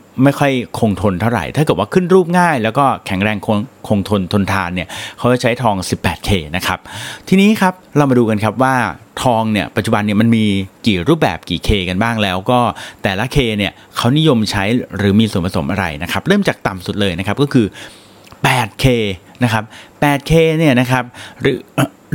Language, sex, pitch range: Thai, male, 100-125 Hz